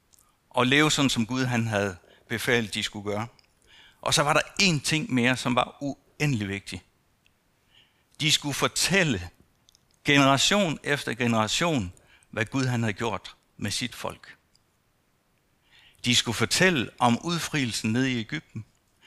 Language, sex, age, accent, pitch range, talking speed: Danish, male, 60-79, native, 105-130 Hz, 140 wpm